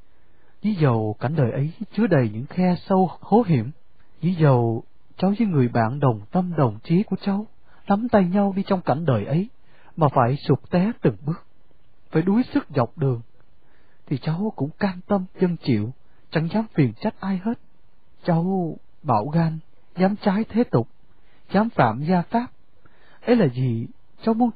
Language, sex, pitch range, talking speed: Vietnamese, male, 130-200 Hz, 175 wpm